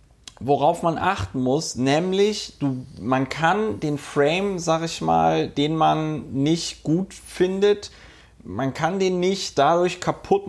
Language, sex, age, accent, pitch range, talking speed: German, male, 30-49, German, 130-160 Hz, 135 wpm